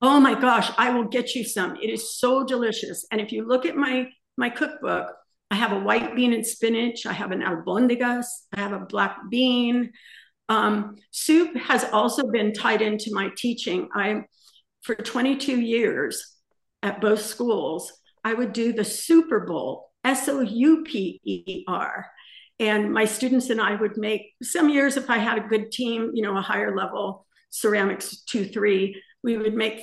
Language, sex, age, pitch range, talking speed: English, female, 50-69, 215-250 Hz, 180 wpm